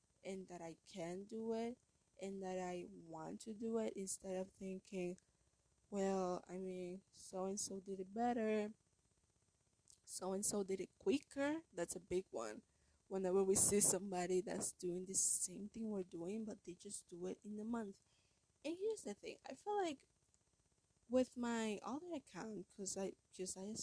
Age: 20-39